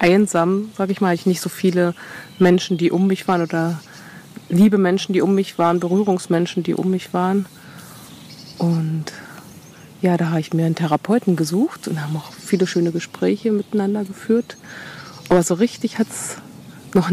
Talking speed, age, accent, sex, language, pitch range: 170 wpm, 30-49, German, female, German, 175-205 Hz